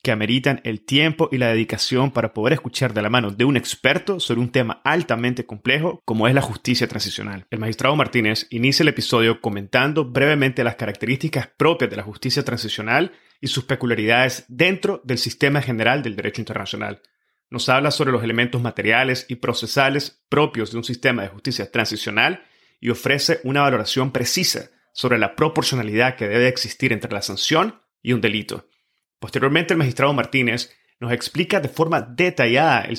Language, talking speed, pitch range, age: Spanish, 170 wpm, 115-140 Hz, 30-49